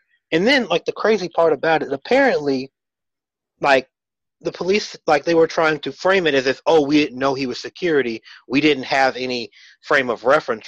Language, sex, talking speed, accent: English, male, 195 wpm, American